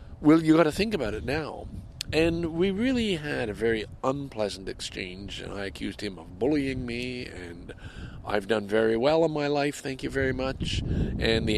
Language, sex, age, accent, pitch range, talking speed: English, male, 50-69, American, 100-145 Hz, 190 wpm